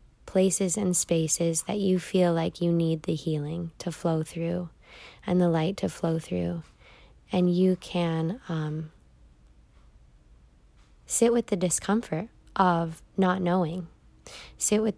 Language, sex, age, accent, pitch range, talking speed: English, female, 20-39, American, 165-195 Hz, 130 wpm